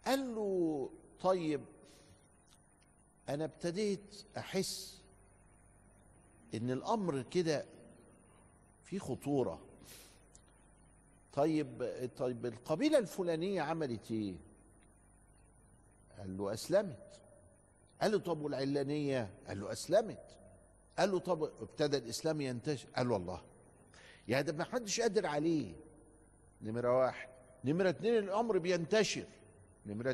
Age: 60-79